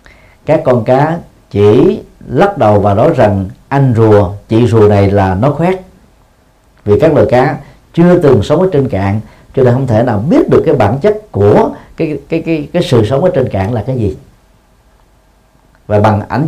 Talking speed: 195 wpm